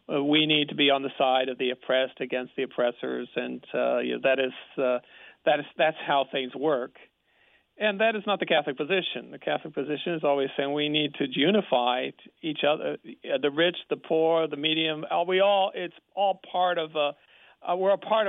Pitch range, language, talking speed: 135-175 Hz, English, 195 wpm